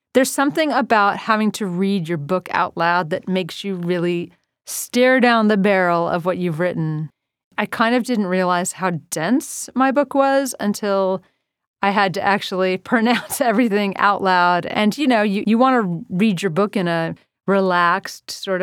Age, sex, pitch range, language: 30-49, female, 180-230 Hz, English